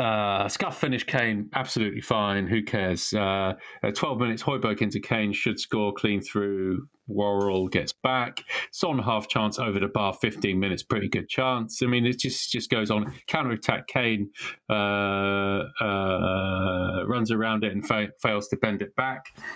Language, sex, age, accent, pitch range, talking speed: English, male, 30-49, British, 100-125 Hz, 165 wpm